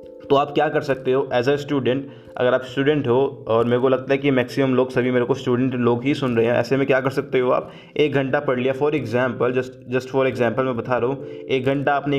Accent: native